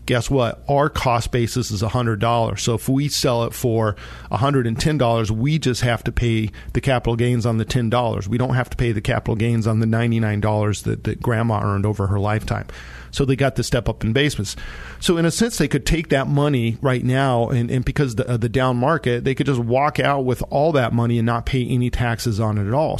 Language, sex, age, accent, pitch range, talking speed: English, male, 40-59, American, 110-130 Hz, 230 wpm